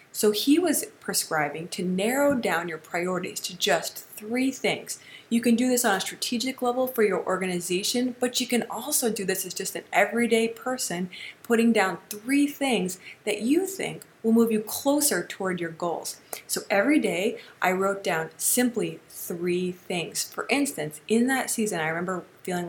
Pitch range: 175-235 Hz